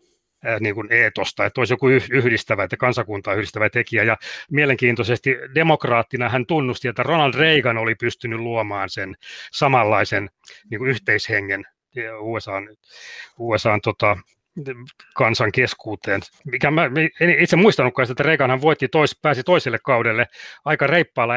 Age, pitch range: 30-49, 115-140 Hz